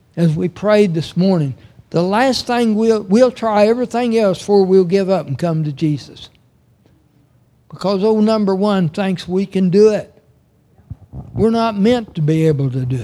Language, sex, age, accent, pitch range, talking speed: English, male, 60-79, American, 120-185 Hz, 175 wpm